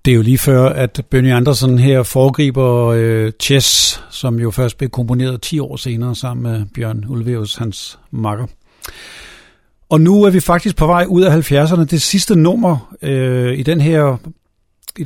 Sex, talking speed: male, 175 wpm